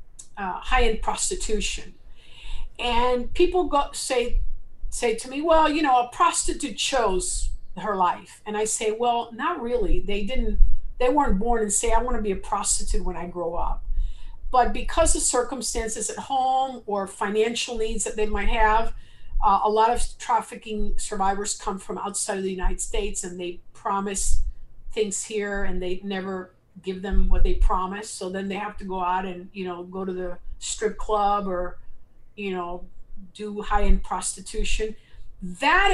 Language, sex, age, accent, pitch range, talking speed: English, female, 50-69, American, 195-255 Hz, 170 wpm